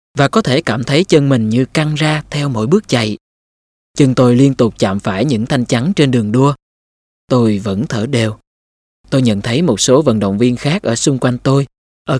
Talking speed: 215 wpm